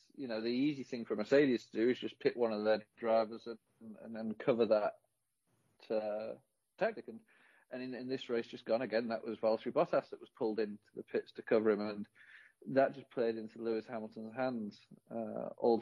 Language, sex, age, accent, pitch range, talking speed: English, male, 40-59, British, 110-130 Hz, 210 wpm